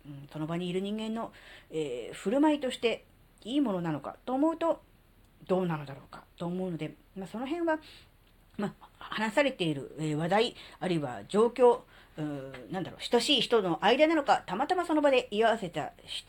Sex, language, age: female, Japanese, 40-59